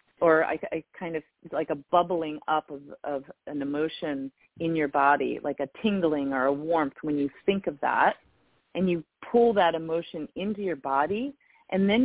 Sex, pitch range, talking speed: female, 155-205 Hz, 185 wpm